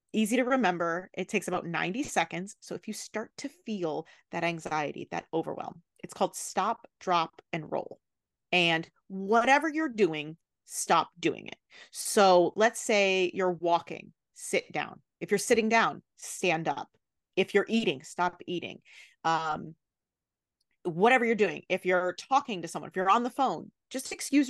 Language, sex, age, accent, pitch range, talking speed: English, female, 30-49, American, 180-260 Hz, 160 wpm